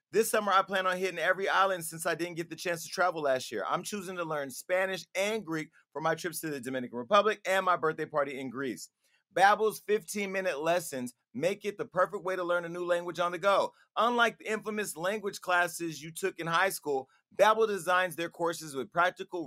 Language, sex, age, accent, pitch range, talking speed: English, male, 30-49, American, 165-200 Hz, 215 wpm